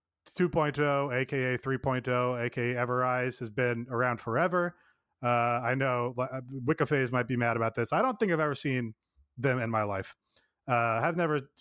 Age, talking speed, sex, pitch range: 30-49, 165 wpm, male, 125-160 Hz